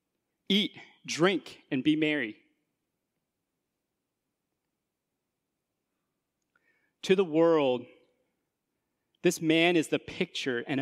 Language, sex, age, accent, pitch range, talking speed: English, male, 30-49, American, 150-215 Hz, 80 wpm